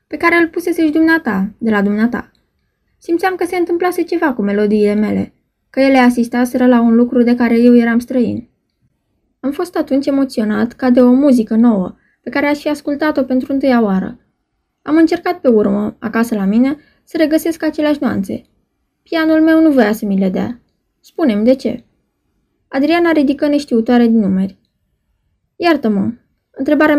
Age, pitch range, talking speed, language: 20-39, 220-290 Hz, 160 wpm, Romanian